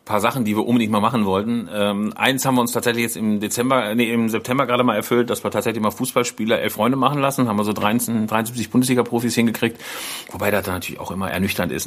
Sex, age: male, 40-59